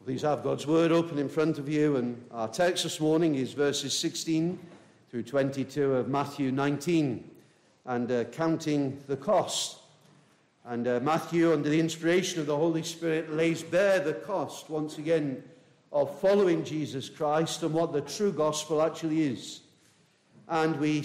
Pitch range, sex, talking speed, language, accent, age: 150-190 Hz, male, 160 wpm, English, British, 50-69